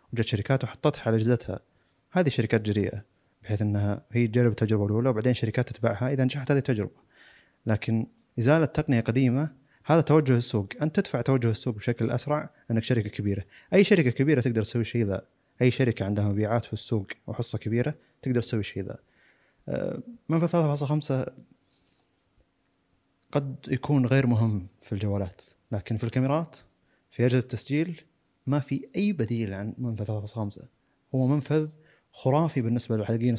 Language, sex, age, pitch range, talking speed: Arabic, male, 30-49, 110-140 Hz, 145 wpm